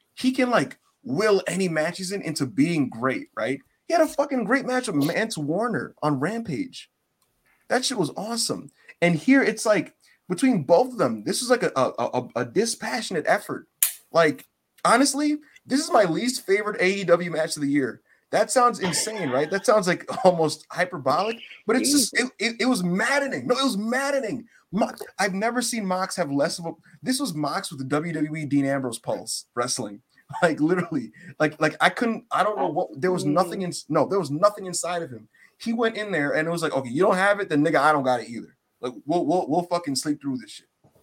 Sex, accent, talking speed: male, American, 215 wpm